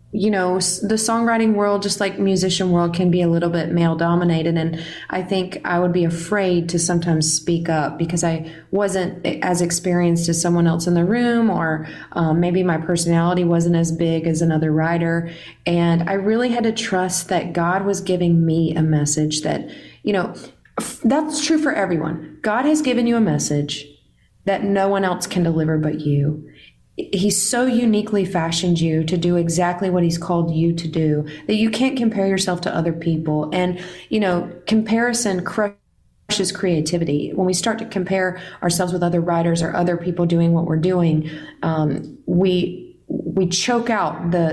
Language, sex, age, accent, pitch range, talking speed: English, female, 20-39, American, 165-195 Hz, 180 wpm